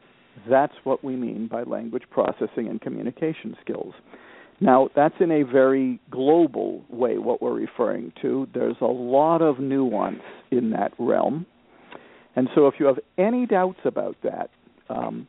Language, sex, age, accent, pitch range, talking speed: English, male, 50-69, American, 125-150 Hz, 155 wpm